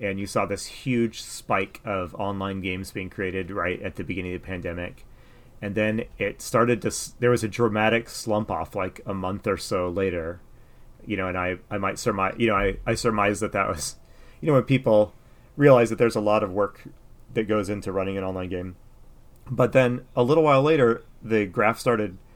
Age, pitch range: 30-49, 100-125 Hz